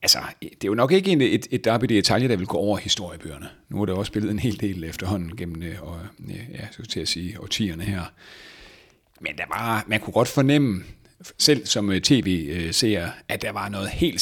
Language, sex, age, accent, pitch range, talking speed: Danish, male, 30-49, native, 90-115 Hz, 205 wpm